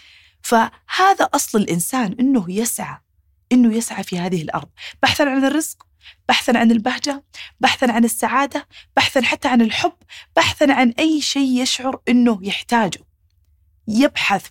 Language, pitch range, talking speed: Arabic, 175-240 Hz, 125 wpm